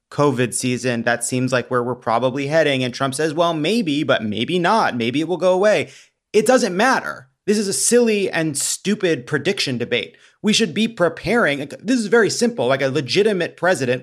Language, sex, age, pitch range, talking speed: English, male, 30-49, 125-160 Hz, 195 wpm